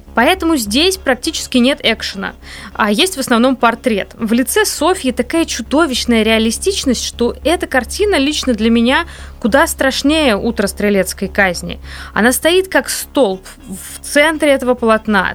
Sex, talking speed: female, 135 wpm